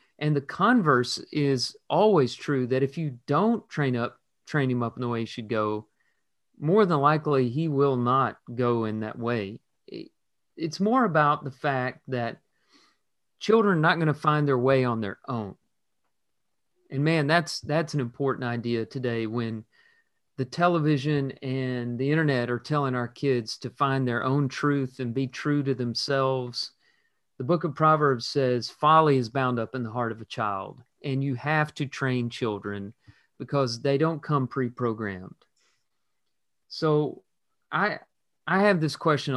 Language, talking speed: English, 165 wpm